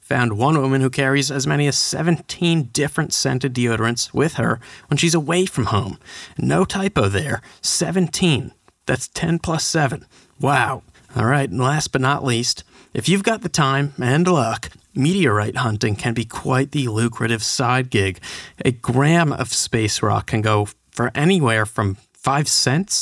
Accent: American